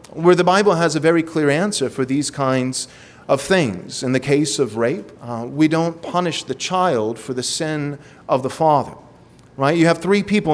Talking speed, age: 200 wpm, 40-59